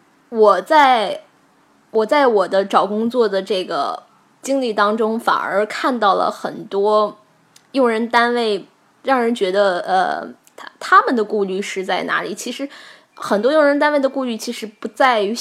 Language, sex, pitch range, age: Chinese, female, 195-250 Hz, 10-29